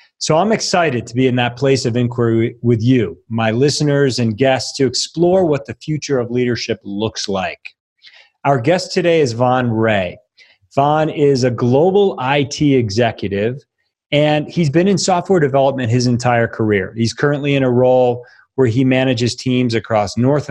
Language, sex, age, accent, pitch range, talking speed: English, male, 40-59, American, 115-135 Hz, 165 wpm